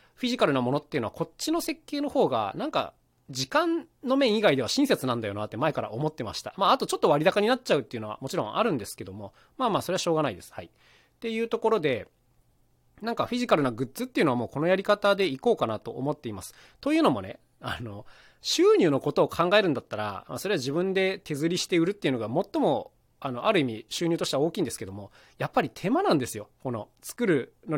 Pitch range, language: 125-205 Hz, Japanese